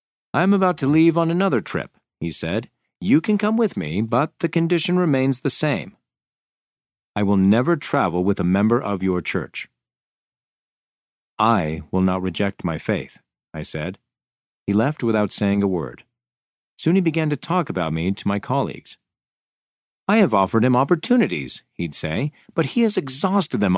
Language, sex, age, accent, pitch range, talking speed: English, male, 40-59, American, 95-155 Hz, 170 wpm